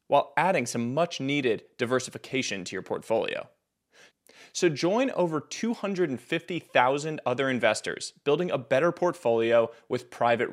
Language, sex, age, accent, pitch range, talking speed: English, male, 30-49, American, 125-175 Hz, 120 wpm